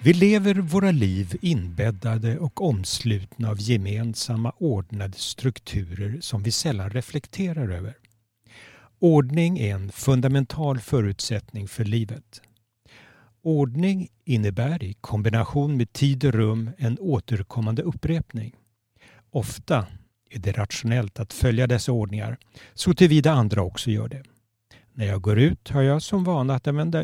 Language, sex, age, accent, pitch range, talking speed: Swedish, male, 60-79, native, 110-140 Hz, 130 wpm